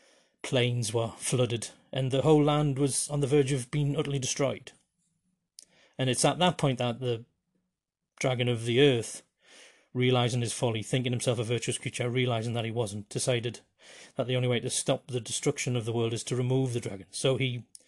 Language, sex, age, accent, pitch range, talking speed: English, male, 40-59, British, 120-135 Hz, 190 wpm